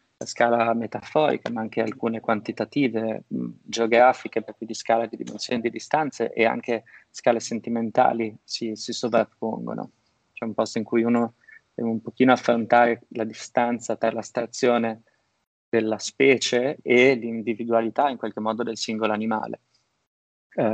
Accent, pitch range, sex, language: native, 115-125 Hz, male, Italian